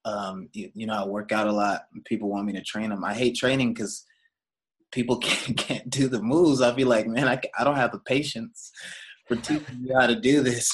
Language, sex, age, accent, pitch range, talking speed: English, male, 20-39, American, 110-130 Hz, 235 wpm